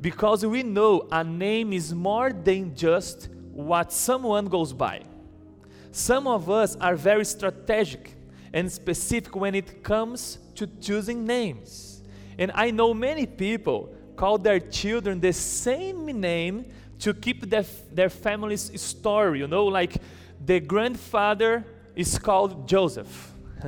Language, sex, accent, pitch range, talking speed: English, male, Brazilian, 170-215 Hz, 130 wpm